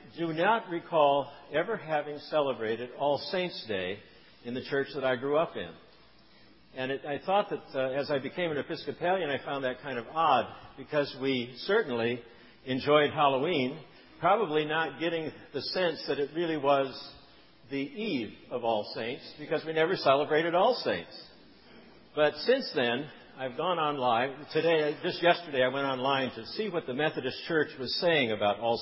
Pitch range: 125-155 Hz